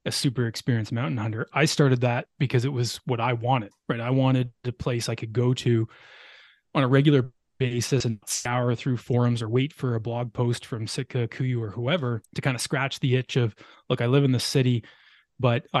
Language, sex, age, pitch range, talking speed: English, male, 20-39, 120-135 Hz, 215 wpm